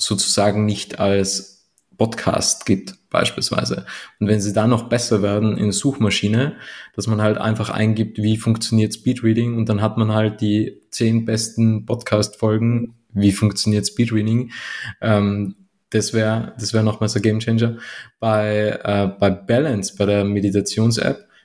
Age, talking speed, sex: 20-39, 150 wpm, male